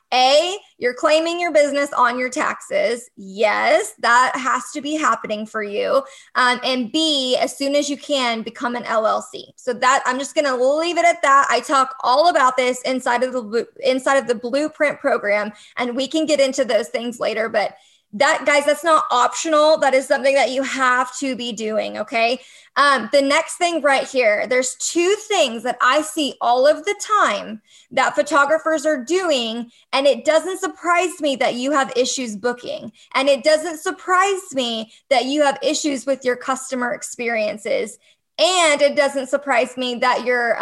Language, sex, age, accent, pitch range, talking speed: English, female, 20-39, American, 245-315 Hz, 180 wpm